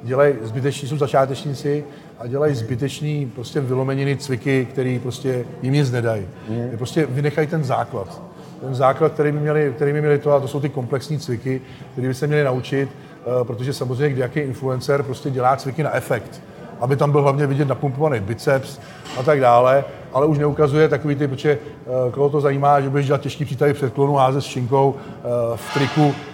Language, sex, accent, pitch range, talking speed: Czech, male, native, 130-145 Hz, 170 wpm